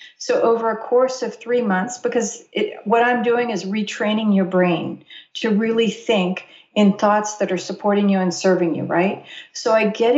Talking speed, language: 185 wpm, English